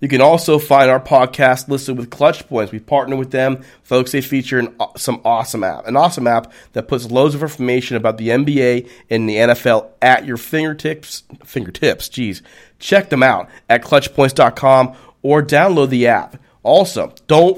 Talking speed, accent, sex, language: 180 wpm, American, male, English